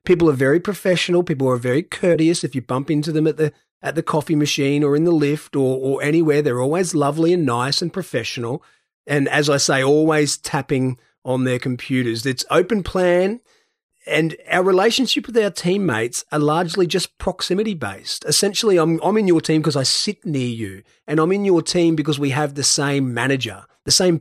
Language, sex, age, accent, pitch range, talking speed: English, male, 30-49, Australian, 125-165 Hz, 200 wpm